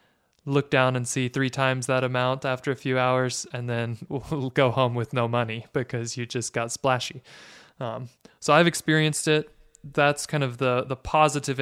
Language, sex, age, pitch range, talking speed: English, male, 20-39, 125-145 Hz, 180 wpm